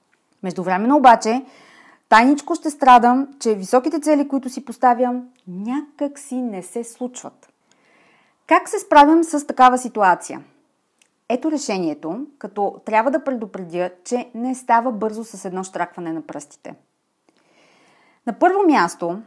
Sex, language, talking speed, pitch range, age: female, Bulgarian, 130 wpm, 190-285 Hz, 30-49